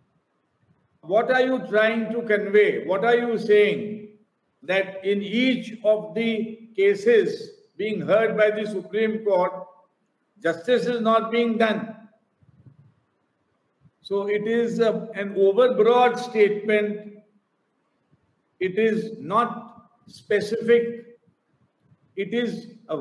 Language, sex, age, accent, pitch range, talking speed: English, male, 50-69, Indian, 195-225 Hz, 105 wpm